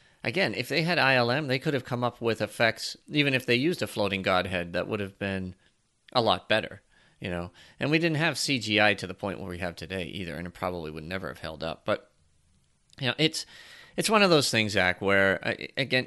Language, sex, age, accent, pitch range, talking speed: English, male, 30-49, American, 110-150 Hz, 230 wpm